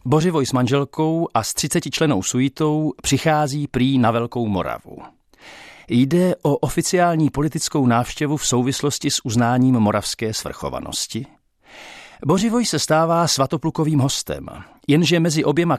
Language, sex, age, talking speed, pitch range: Czech, male, 50-69, 120 wpm, 125-155 Hz